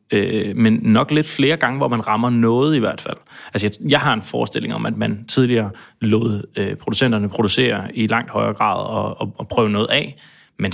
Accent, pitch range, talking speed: Danish, 110-130 Hz, 210 wpm